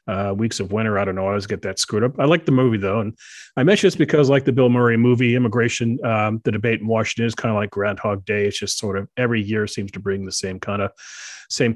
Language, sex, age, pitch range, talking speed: English, male, 40-59, 100-125 Hz, 275 wpm